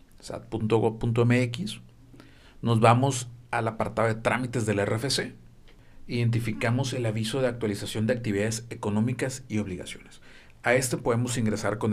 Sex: male